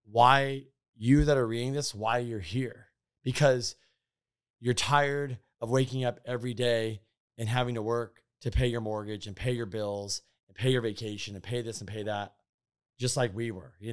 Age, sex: 30-49, male